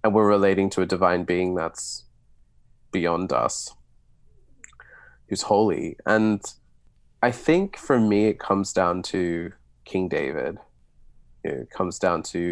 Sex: male